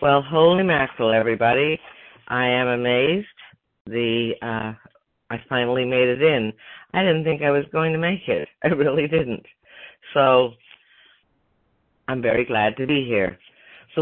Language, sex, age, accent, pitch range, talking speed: English, female, 50-69, American, 105-130 Hz, 145 wpm